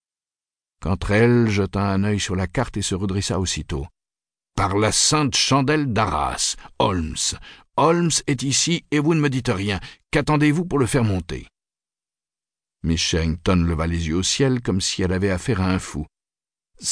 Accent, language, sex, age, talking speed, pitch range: French, French, male, 50-69, 175 wpm, 85-115 Hz